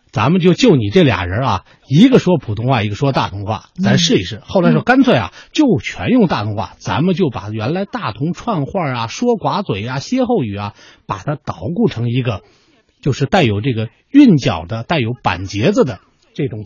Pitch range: 130-210 Hz